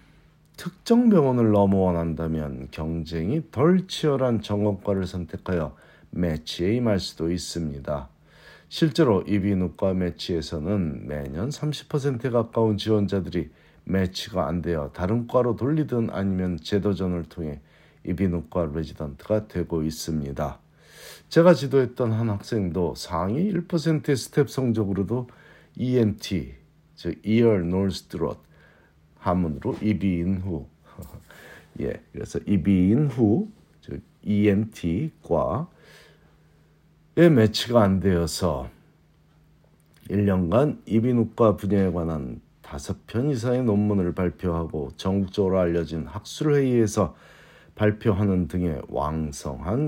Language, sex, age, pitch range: Korean, male, 50-69, 85-120 Hz